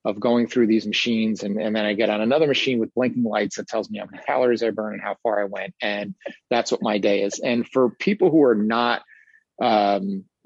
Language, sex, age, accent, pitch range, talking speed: English, male, 30-49, American, 105-120 Hz, 240 wpm